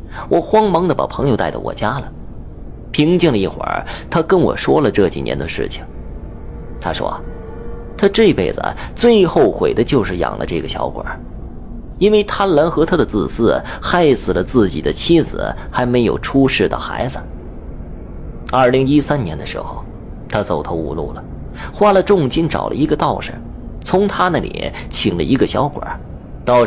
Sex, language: male, Chinese